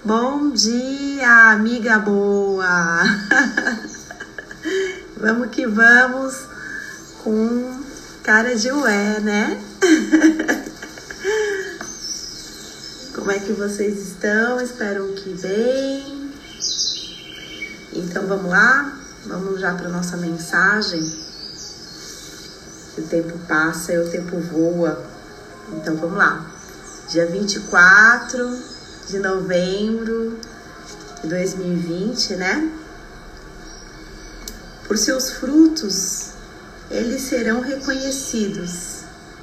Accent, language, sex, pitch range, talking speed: Brazilian, Portuguese, female, 190-265 Hz, 80 wpm